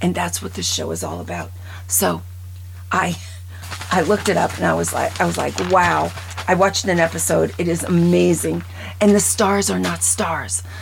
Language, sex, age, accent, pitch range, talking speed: English, female, 40-59, American, 85-95 Hz, 195 wpm